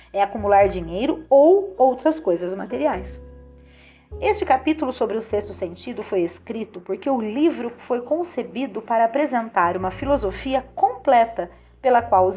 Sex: female